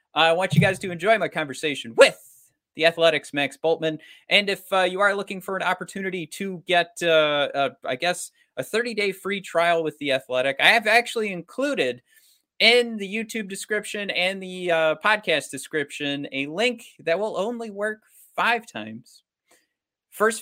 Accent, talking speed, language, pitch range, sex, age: American, 170 wpm, English, 160-220 Hz, male, 30-49